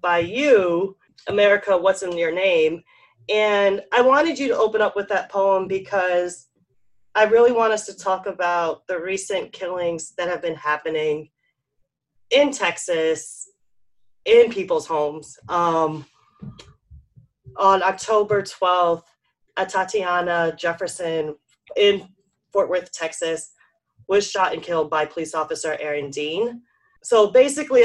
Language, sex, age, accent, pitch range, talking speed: English, female, 30-49, American, 160-210 Hz, 125 wpm